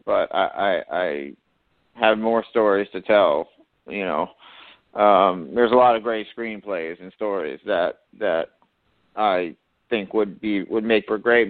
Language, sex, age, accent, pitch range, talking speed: English, male, 40-59, American, 110-135 Hz, 155 wpm